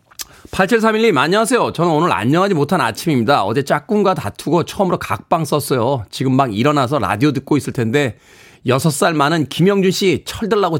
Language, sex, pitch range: Korean, male, 120-155 Hz